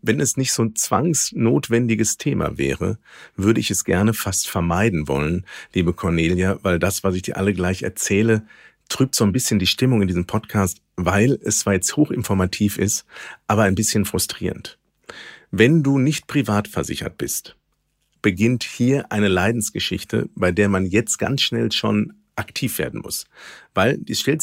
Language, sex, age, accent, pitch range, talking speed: German, male, 50-69, German, 95-115 Hz, 165 wpm